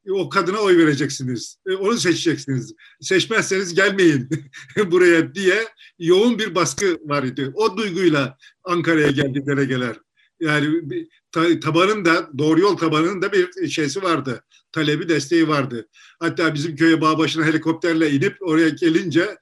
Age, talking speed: 50-69, 130 wpm